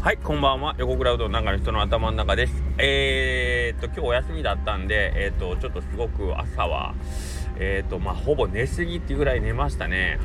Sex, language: male, Japanese